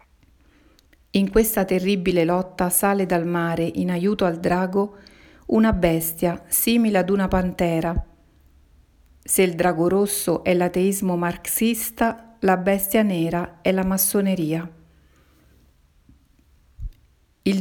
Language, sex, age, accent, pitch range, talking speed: Italian, female, 40-59, native, 170-200 Hz, 105 wpm